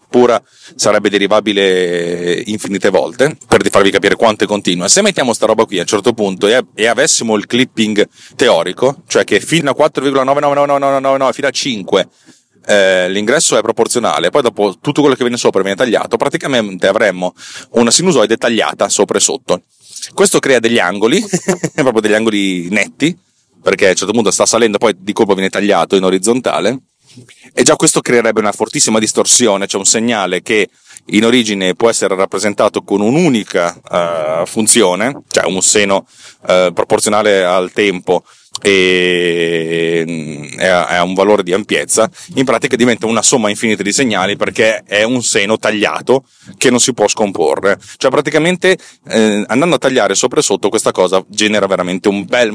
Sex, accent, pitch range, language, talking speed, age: male, native, 95-125 Hz, Italian, 160 wpm, 30-49